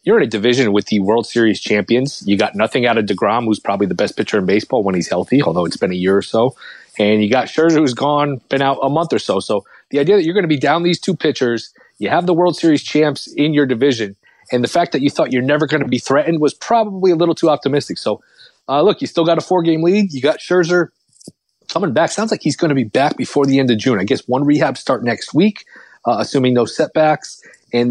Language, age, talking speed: English, 30-49, 260 wpm